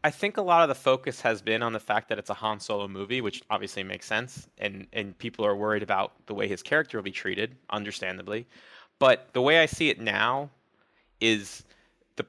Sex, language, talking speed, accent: male, English, 220 wpm, American